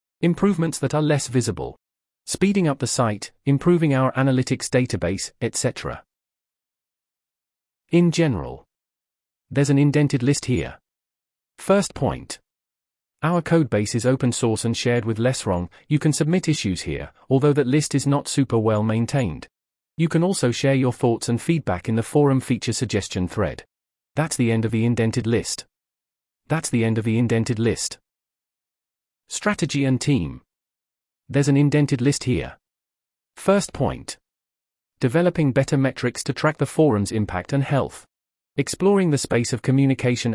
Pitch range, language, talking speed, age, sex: 100-140 Hz, English, 145 wpm, 40-59, male